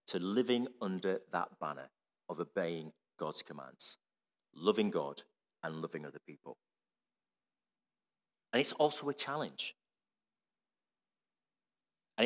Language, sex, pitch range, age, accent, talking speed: English, male, 95-145 Hz, 40-59, British, 105 wpm